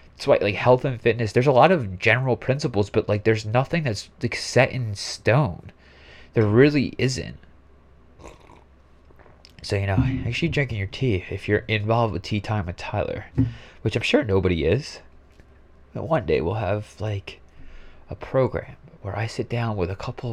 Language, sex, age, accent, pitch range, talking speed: English, male, 20-39, American, 95-130 Hz, 175 wpm